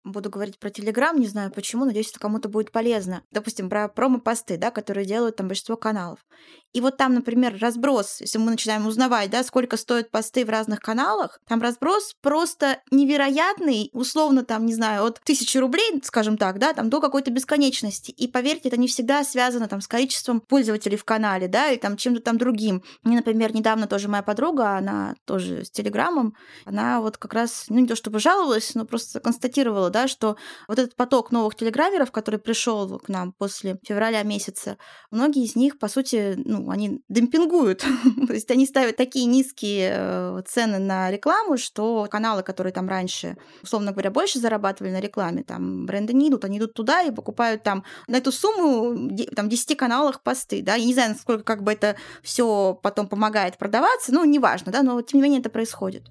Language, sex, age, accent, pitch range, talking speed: Russian, female, 20-39, native, 205-255 Hz, 185 wpm